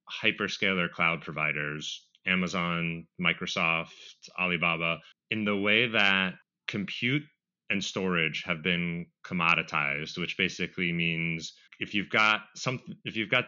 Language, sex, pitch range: English, male, 90-115 Hz